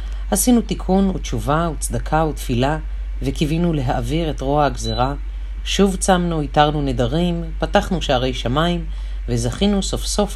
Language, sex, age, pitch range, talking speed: Hebrew, female, 40-59, 125-180 Hz, 115 wpm